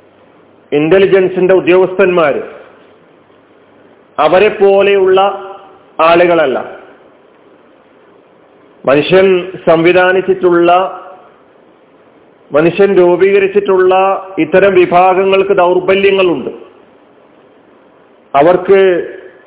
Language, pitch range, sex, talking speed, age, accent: Malayalam, 170-195 Hz, male, 35 wpm, 40-59, native